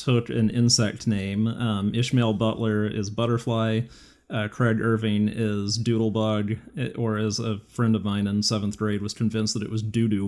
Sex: male